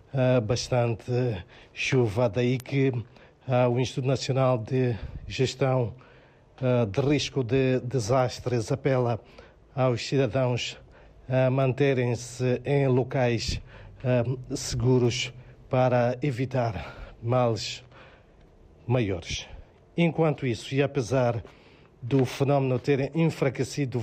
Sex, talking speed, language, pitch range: male, 90 wpm, Portuguese, 120-135 Hz